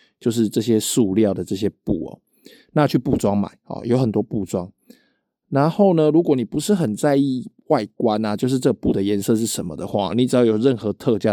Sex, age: male, 20-39